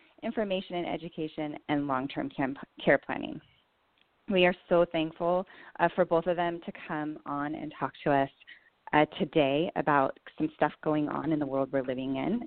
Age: 30-49